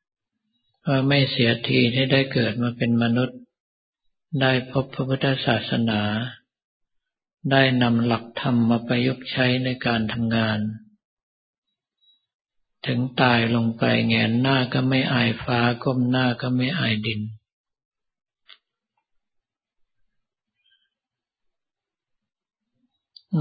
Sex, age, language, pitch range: male, 60-79, Thai, 115-135 Hz